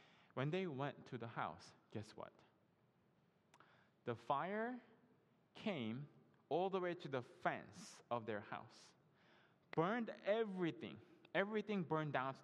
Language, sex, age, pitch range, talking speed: English, male, 20-39, 130-190 Hz, 125 wpm